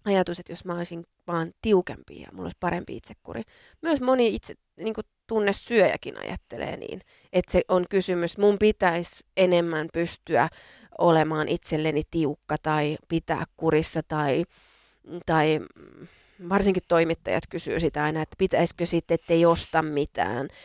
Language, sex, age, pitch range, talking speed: Finnish, female, 30-49, 170-200 Hz, 135 wpm